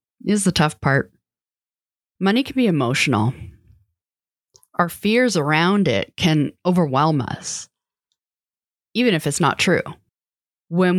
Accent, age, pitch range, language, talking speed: American, 30-49, 145-200 Hz, English, 115 wpm